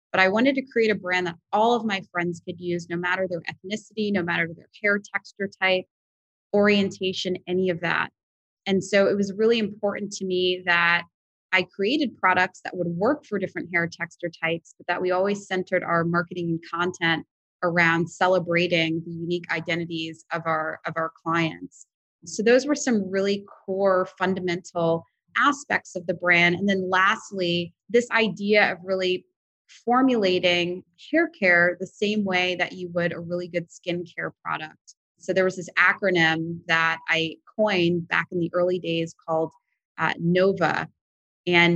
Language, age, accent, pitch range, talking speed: English, 20-39, American, 170-195 Hz, 165 wpm